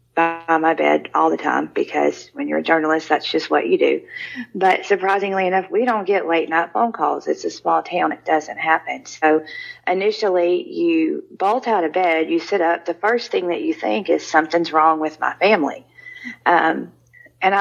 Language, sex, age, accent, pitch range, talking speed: English, female, 40-59, American, 160-210 Hz, 190 wpm